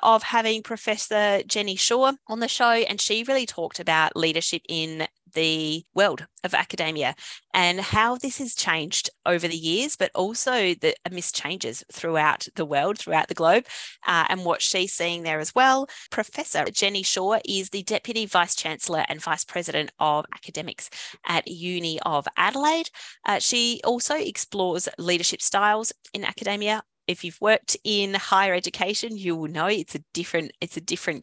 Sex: female